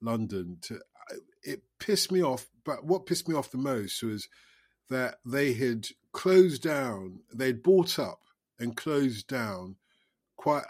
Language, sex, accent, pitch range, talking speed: English, male, British, 105-135 Hz, 145 wpm